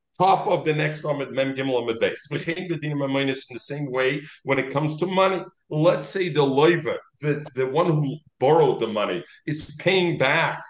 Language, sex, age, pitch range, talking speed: English, male, 50-69, 135-175 Hz, 150 wpm